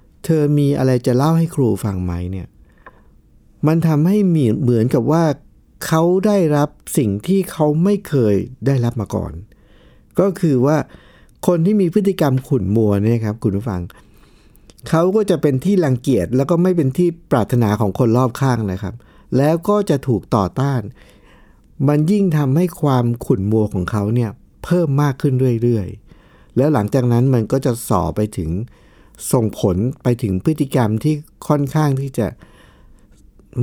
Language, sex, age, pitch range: Thai, male, 60-79, 110-155 Hz